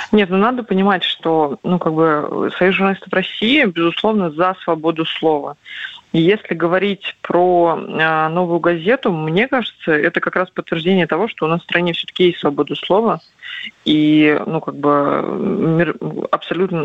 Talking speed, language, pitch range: 160 wpm, Russian, 155-185 Hz